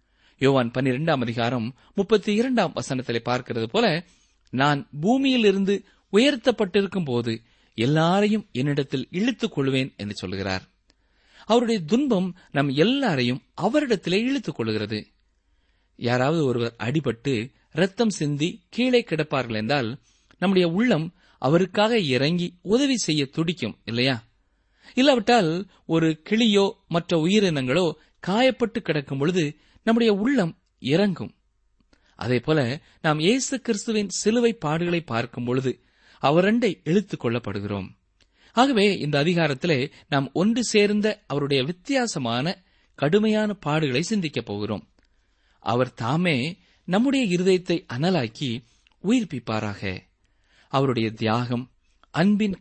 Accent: native